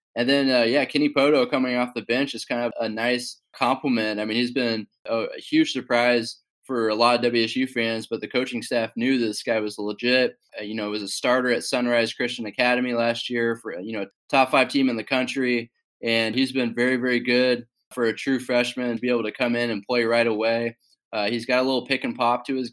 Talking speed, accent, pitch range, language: 235 wpm, American, 115-125 Hz, English